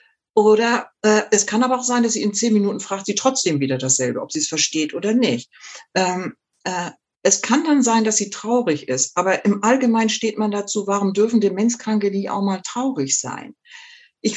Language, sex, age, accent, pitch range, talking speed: German, female, 60-79, German, 190-235 Hz, 200 wpm